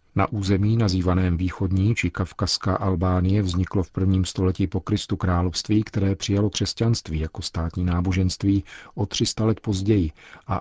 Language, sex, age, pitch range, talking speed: Czech, male, 50-69, 90-105 Hz, 140 wpm